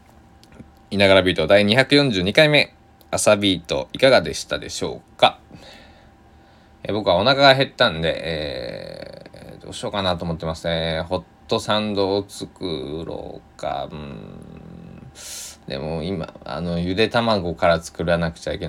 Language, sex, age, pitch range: Japanese, male, 20-39, 80-100 Hz